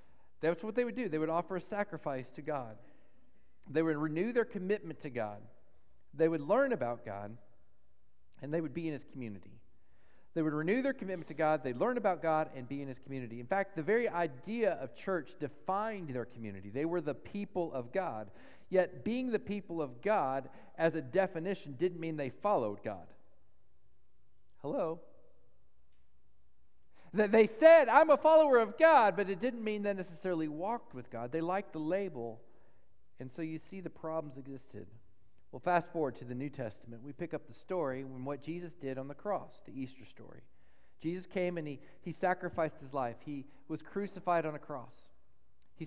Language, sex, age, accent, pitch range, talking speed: English, male, 50-69, American, 130-185 Hz, 190 wpm